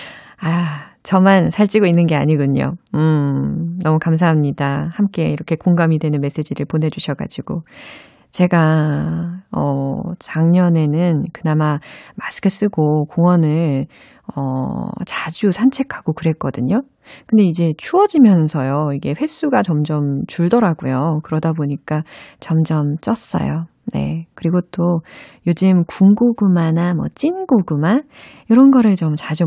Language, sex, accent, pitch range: Korean, female, native, 155-205 Hz